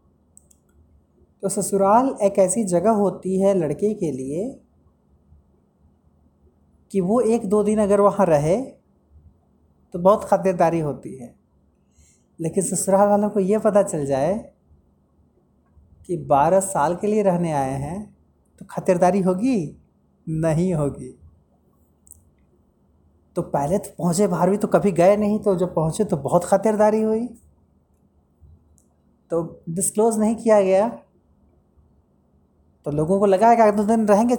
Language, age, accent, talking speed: Hindi, 30-49, native, 135 wpm